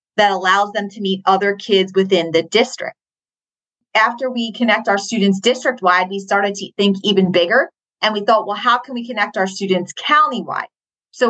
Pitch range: 190-225 Hz